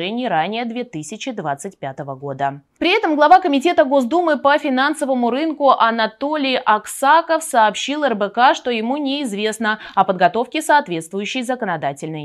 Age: 20-39